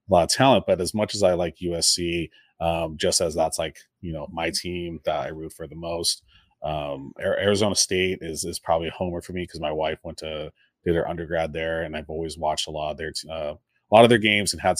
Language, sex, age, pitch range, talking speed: English, male, 30-49, 85-95 Hz, 245 wpm